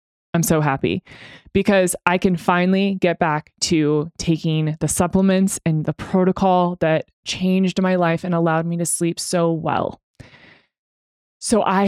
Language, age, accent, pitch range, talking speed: English, 20-39, American, 160-195 Hz, 145 wpm